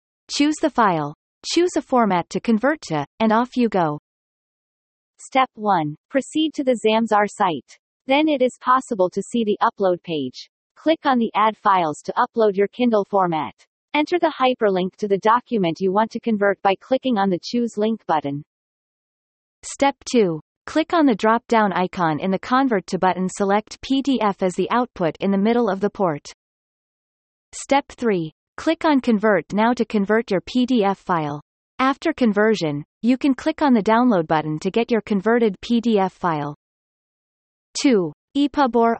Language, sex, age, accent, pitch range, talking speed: English, female, 40-59, American, 185-255 Hz, 165 wpm